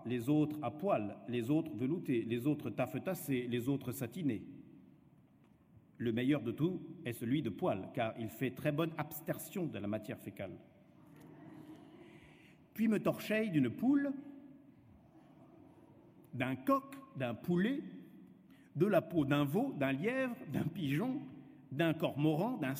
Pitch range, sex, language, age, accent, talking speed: 145-225 Hz, male, French, 50-69, French, 135 wpm